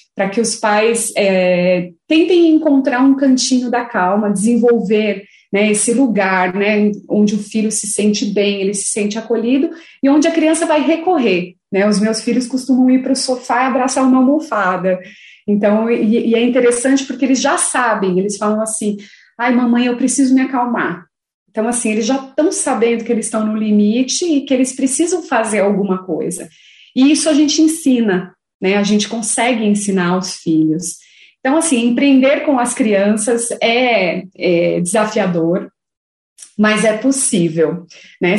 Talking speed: 165 wpm